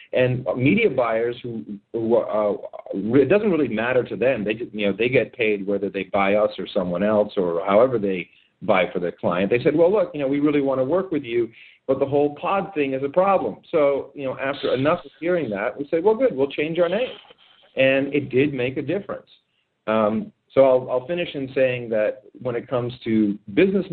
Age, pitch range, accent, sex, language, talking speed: 50-69, 110-145 Hz, American, male, English, 225 wpm